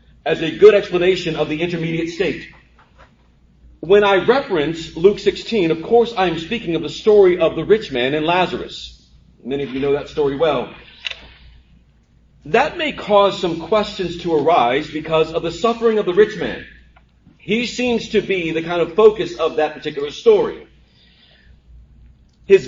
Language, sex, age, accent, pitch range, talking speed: English, male, 40-59, American, 160-215 Hz, 160 wpm